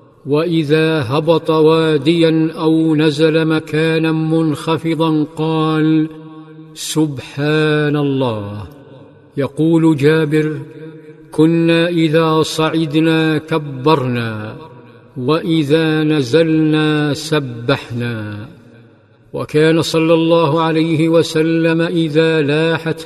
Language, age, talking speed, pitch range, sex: Arabic, 50-69, 70 wpm, 150-160 Hz, male